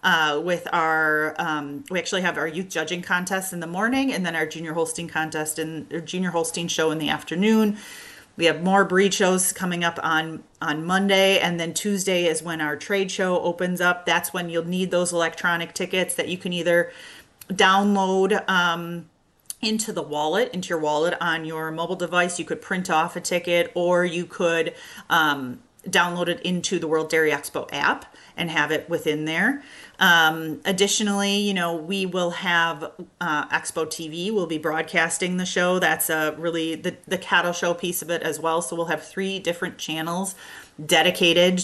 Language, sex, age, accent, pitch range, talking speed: English, female, 40-59, American, 160-185 Hz, 185 wpm